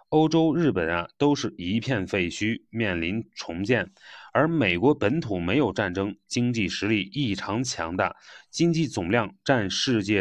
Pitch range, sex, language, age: 100-140 Hz, male, Chinese, 30-49